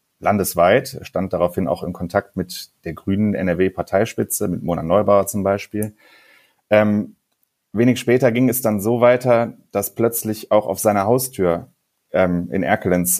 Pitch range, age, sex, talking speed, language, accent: 90-105 Hz, 30-49, male, 145 wpm, German, German